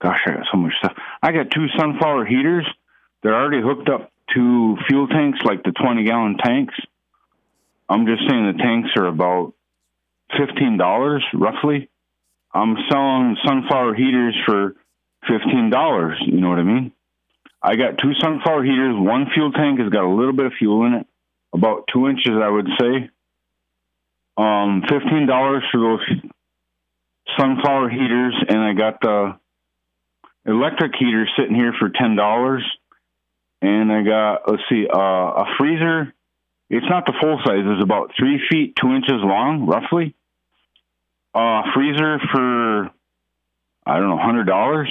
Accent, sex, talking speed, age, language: American, male, 145 wpm, 50-69, English